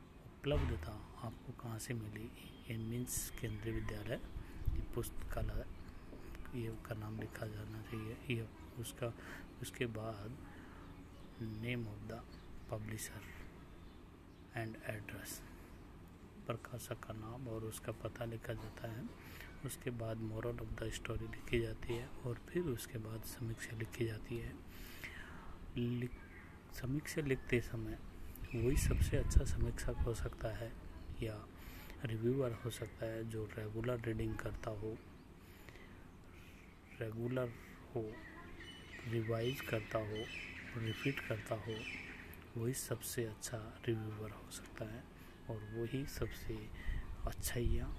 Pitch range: 90-115 Hz